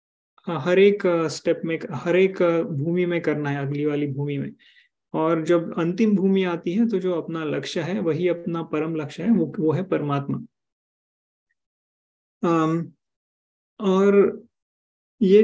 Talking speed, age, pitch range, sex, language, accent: 145 wpm, 20-39, 155-185 Hz, male, Hindi, native